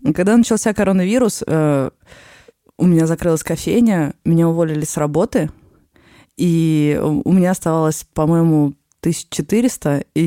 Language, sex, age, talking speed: Russian, female, 20-39, 105 wpm